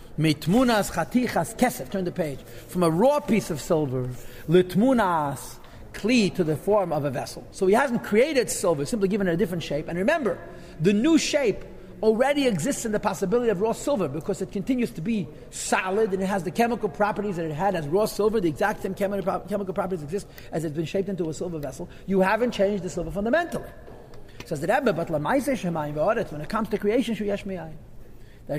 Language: English